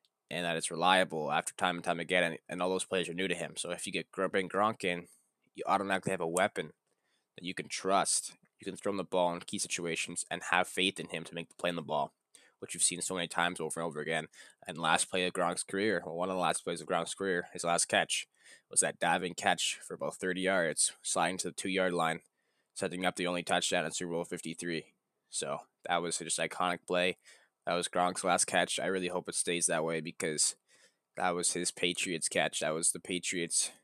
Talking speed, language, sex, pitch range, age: 240 wpm, English, male, 80-90 Hz, 20-39